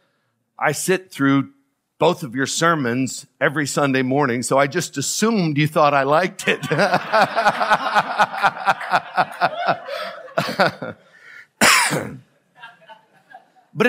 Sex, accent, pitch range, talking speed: male, American, 130-175 Hz, 85 wpm